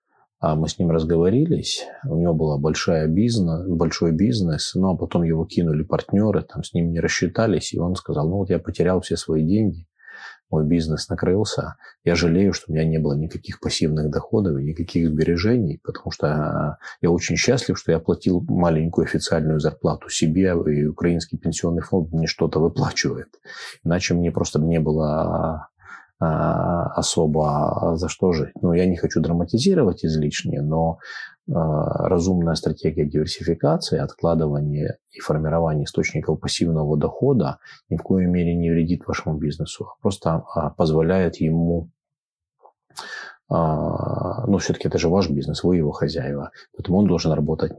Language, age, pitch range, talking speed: Ukrainian, 30-49, 75-85 Hz, 145 wpm